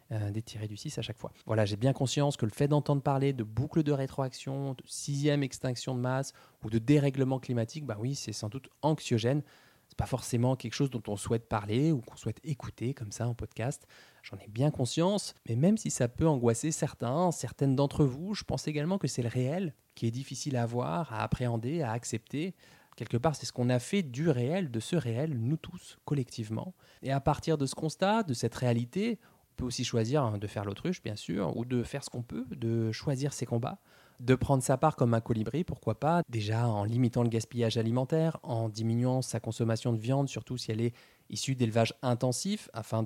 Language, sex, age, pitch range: French, male, 20-39, 115-145 Hz